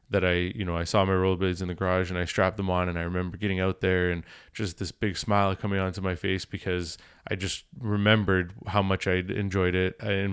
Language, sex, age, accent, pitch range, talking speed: English, male, 20-39, American, 90-105 Hz, 230 wpm